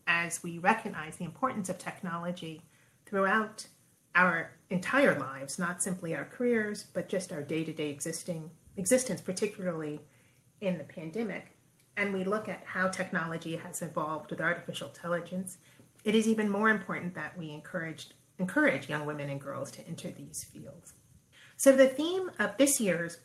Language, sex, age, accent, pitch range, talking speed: English, female, 40-59, American, 160-210 Hz, 150 wpm